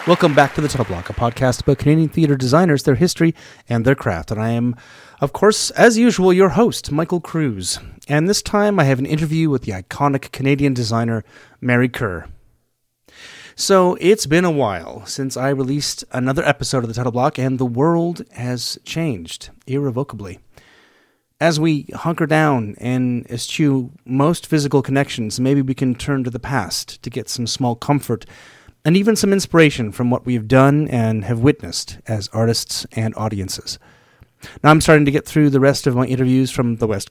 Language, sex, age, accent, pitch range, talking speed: English, male, 30-49, American, 120-150 Hz, 180 wpm